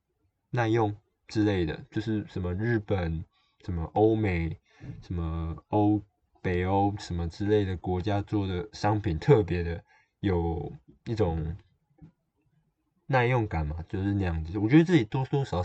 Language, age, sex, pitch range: Chinese, 20-39, male, 85-105 Hz